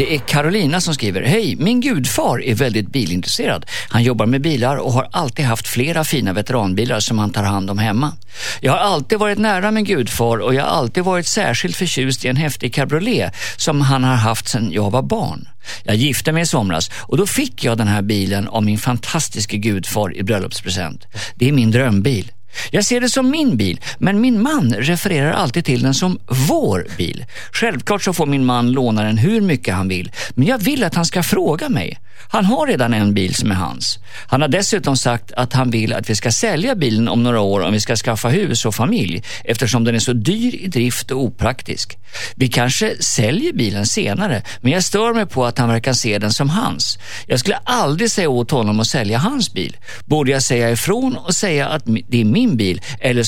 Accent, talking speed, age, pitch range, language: native, 215 wpm, 50-69, 110-160 Hz, Swedish